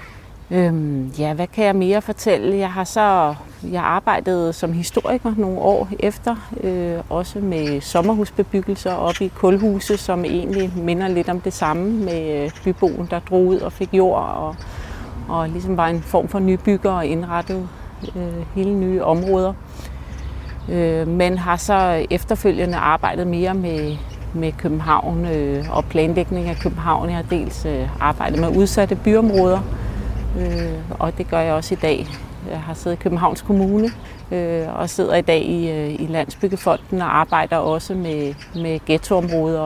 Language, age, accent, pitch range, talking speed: Danish, 30-49, native, 160-190 Hz, 155 wpm